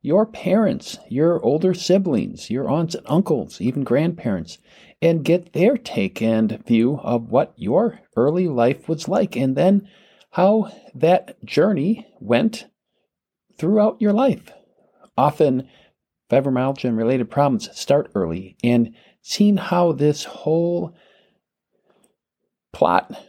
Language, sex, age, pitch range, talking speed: English, male, 50-69, 110-165 Hz, 120 wpm